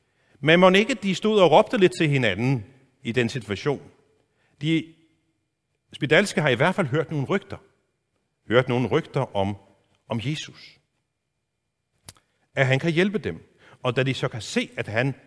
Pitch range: 120-165 Hz